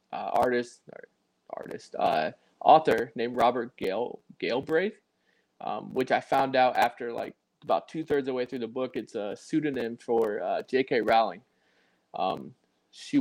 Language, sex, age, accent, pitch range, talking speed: English, male, 20-39, American, 115-130 Hz, 155 wpm